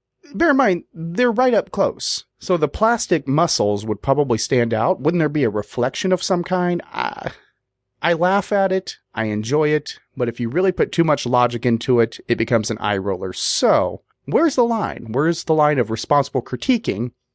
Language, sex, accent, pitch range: English, male, American, 125-195 Hz